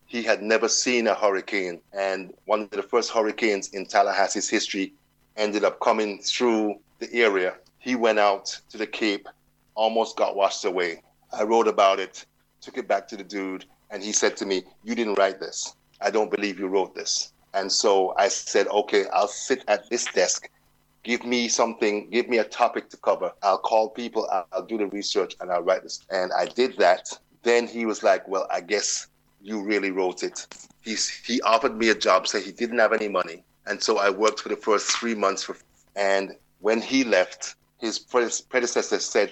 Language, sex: English, male